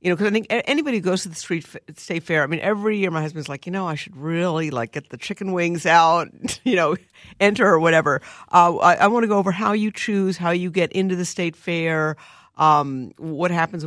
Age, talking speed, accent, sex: 50-69, 245 wpm, American, female